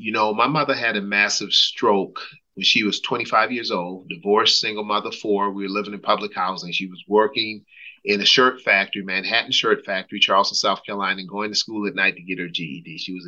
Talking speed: 220 wpm